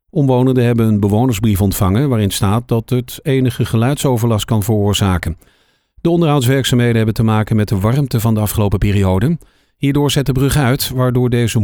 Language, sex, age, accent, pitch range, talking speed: Dutch, male, 50-69, Dutch, 110-135 Hz, 165 wpm